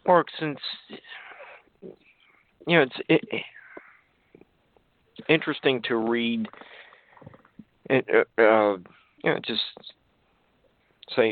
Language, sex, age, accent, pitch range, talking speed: English, male, 50-69, American, 100-115 Hz, 90 wpm